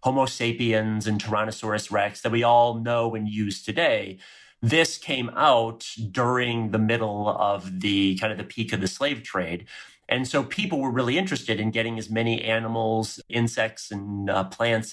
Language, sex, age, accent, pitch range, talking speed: English, male, 30-49, American, 105-125 Hz, 175 wpm